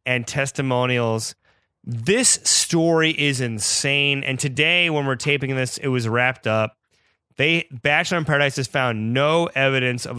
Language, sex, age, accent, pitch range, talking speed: English, male, 30-49, American, 120-150 Hz, 145 wpm